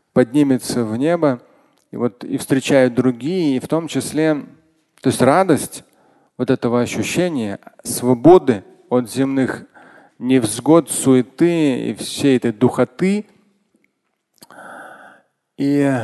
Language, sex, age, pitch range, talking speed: Russian, male, 40-59, 120-155 Hz, 105 wpm